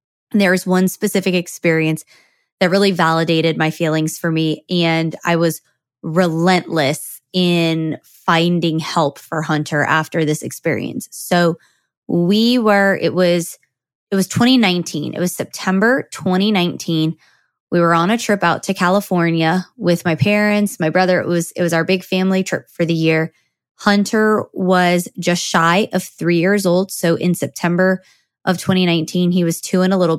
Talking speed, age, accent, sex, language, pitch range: 155 wpm, 20-39, American, female, English, 165-195 Hz